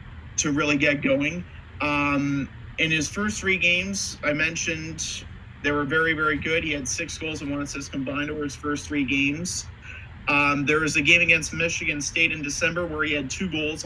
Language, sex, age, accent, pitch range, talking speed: English, male, 30-49, American, 140-180 Hz, 195 wpm